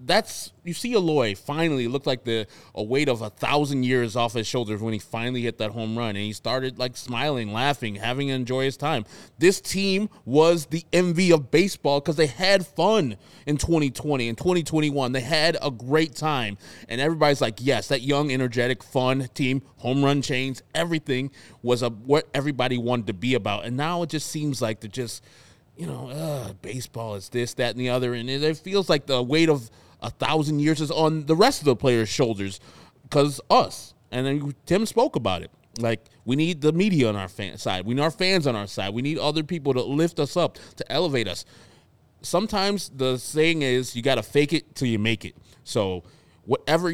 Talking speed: 205 wpm